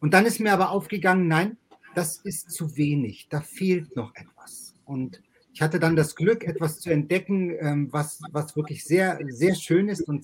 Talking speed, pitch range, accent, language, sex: 190 wpm, 145-180 Hz, German, German, male